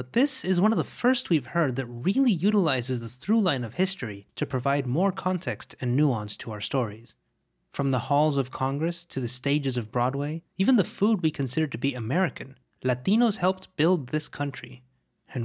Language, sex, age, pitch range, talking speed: English, male, 20-39, 125-180 Hz, 190 wpm